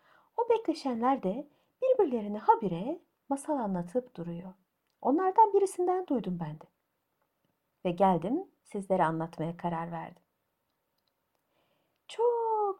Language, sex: Turkish, female